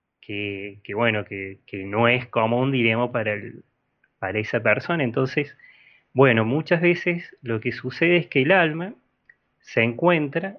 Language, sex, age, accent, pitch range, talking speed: Spanish, male, 30-49, Argentinian, 120-160 Hz, 155 wpm